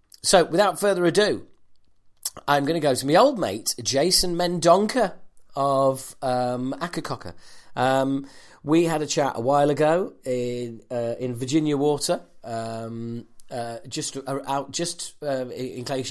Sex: male